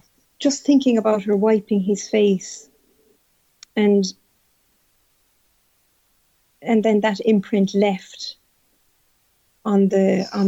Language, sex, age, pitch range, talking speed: English, female, 40-59, 190-220 Hz, 90 wpm